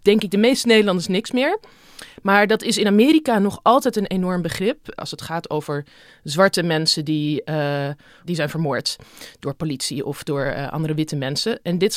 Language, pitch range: Dutch, 165-205 Hz